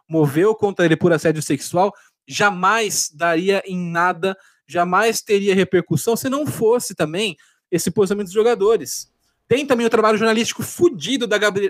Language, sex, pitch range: Portuguese, male, 175-220 Hz